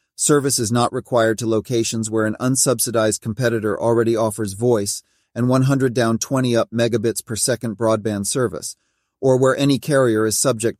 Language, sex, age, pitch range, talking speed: English, male, 40-59, 110-125 Hz, 135 wpm